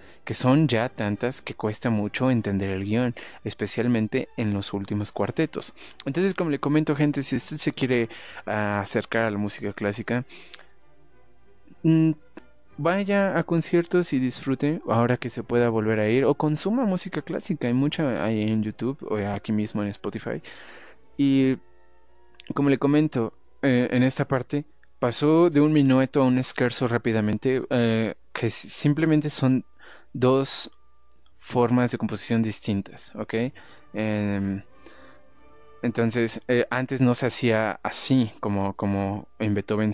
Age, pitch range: 20-39, 105-130 Hz